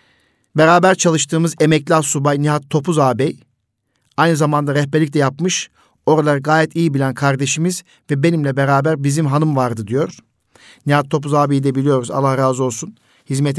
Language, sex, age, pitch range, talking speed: Turkish, male, 50-69, 135-170 Hz, 145 wpm